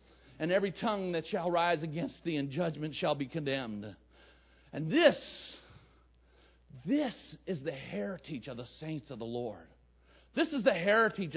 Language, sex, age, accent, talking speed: English, male, 50-69, American, 155 wpm